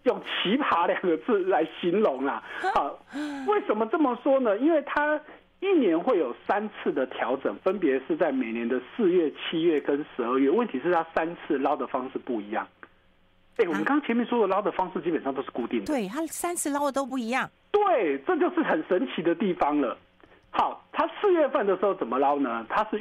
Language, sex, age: Chinese, male, 50-69